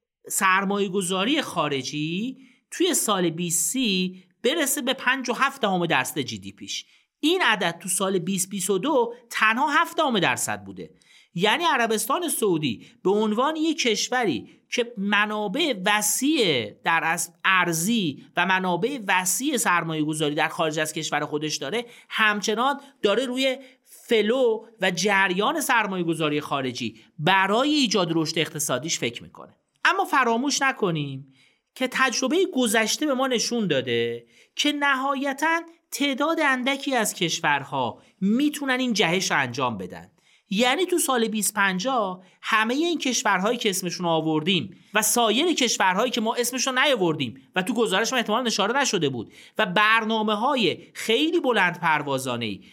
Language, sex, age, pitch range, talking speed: Persian, male, 40-59, 170-255 Hz, 130 wpm